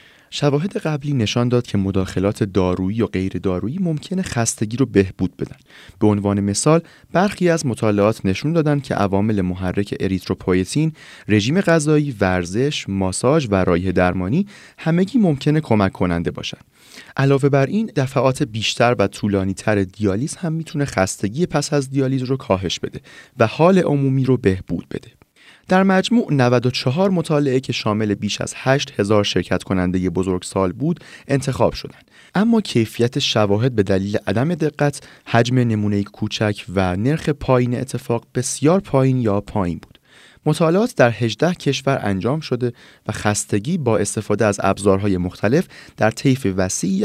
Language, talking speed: Persian, 150 wpm